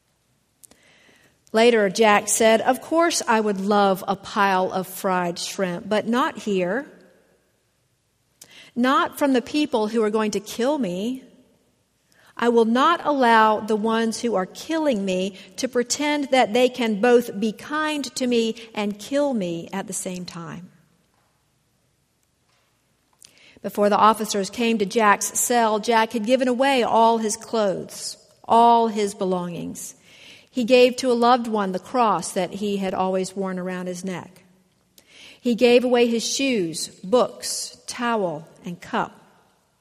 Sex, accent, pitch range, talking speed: female, American, 195-245 Hz, 145 wpm